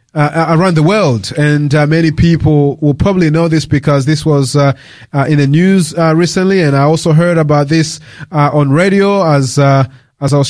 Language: English